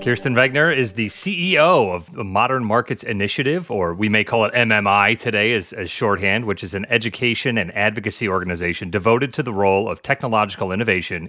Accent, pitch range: American, 100-130 Hz